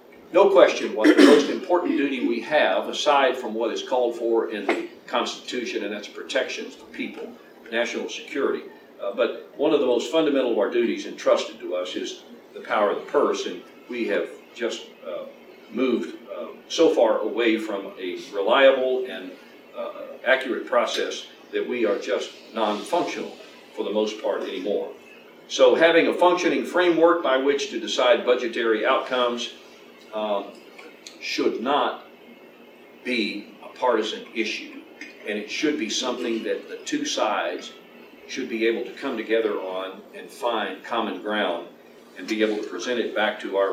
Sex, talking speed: male, 160 wpm